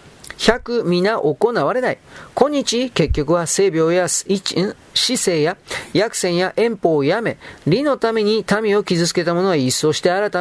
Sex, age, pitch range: male, 40-59, 165-210 Hz